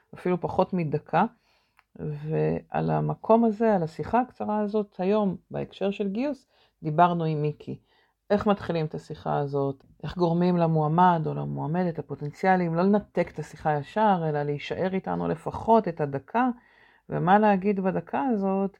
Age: 40-59